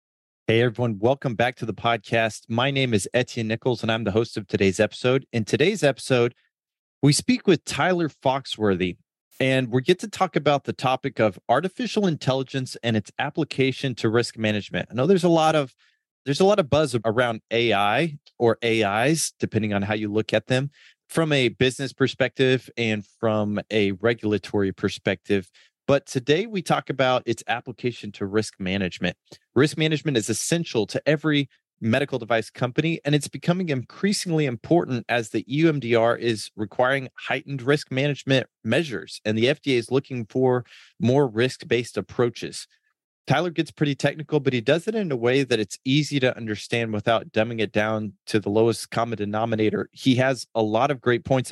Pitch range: 110-140 Hz